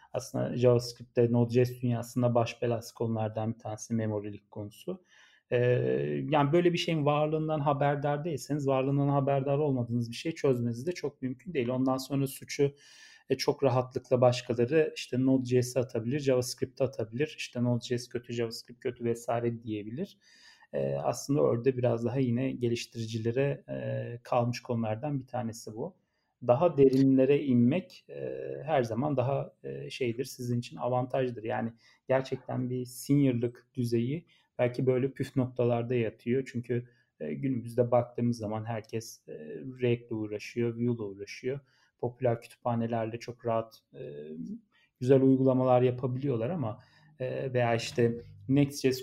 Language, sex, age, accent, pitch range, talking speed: Turkish, male, 40-59, native, 120-135 Hz, 130 wpm